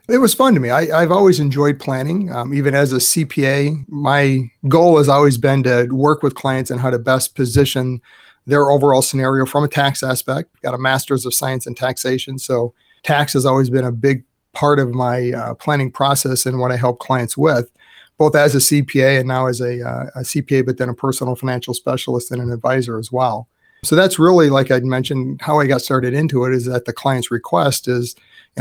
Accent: American